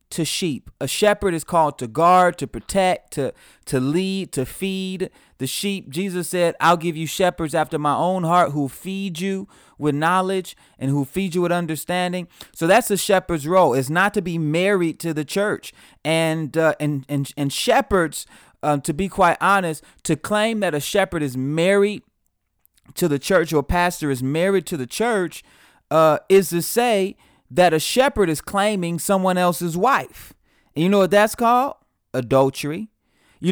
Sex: male